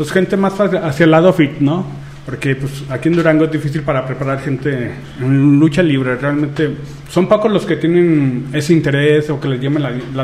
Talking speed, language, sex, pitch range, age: 200 wpm, Spanish, male, 135-165 Hz, 30-49